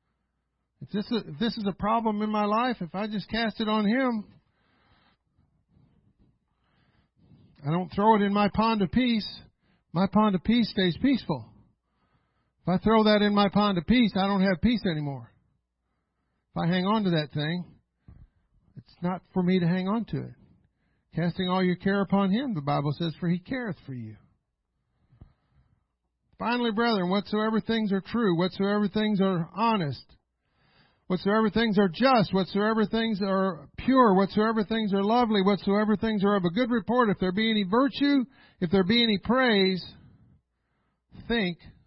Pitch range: 170-220 Hz